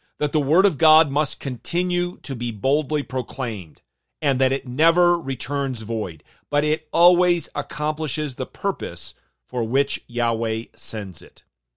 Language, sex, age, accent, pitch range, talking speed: English, male, 40-59, American, 115-155 Hz, 145 wpm